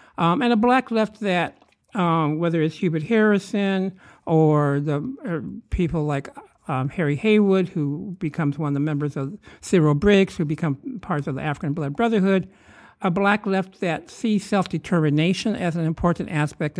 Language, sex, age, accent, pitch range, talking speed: English, male, 60-79, American, 145-185 Hz, 160 wpm